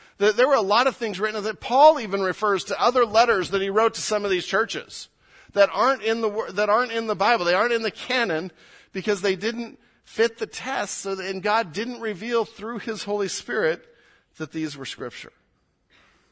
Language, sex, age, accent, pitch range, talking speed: English, male, 40-59, American, 165-220 Hz, 205 wpm